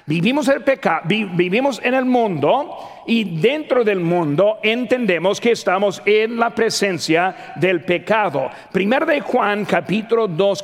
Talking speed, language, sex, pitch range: 125 wpm, Spanish, male, 180-235 Hz